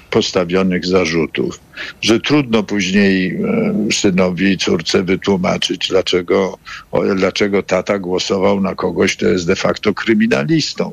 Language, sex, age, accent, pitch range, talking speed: Polish, male, 60-79, native, 95-130 Hz, 110 wpm